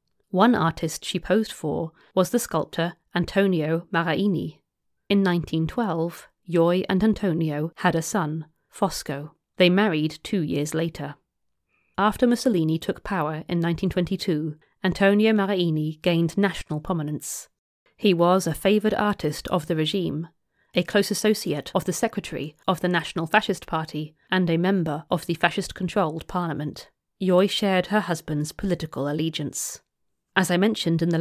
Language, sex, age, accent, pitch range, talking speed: English, female, 30-49, British, 160-200 Hz, 140 wpm